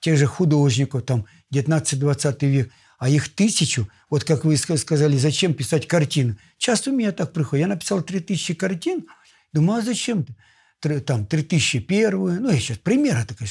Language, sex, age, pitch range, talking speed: Russian, male, 60-79, 120-160 Hz, 160 wpm